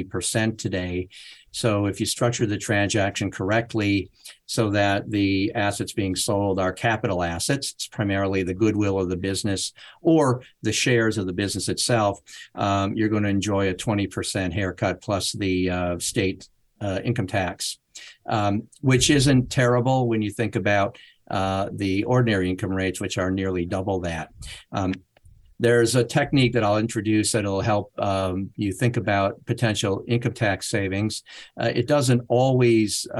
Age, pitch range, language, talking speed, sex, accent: 50-69, 95-115 Hz, English, 155 wpm, male, American